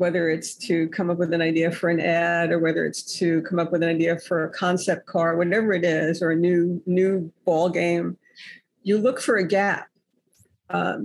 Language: English